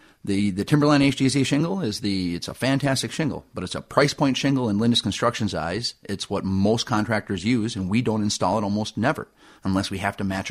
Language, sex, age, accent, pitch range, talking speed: English, male, 30-49, American, 100-125 Hz, 215 wpm